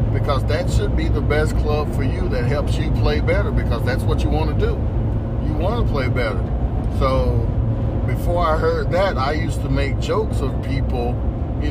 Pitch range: 105-120 Hz